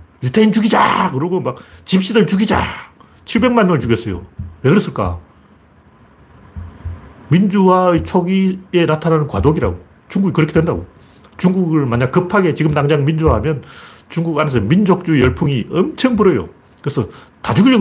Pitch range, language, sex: 105-170 Hz, Korean, male